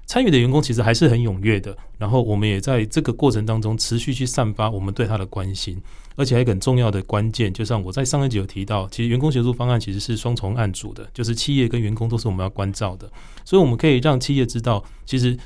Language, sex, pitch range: Chinese, male, 105-130 Hz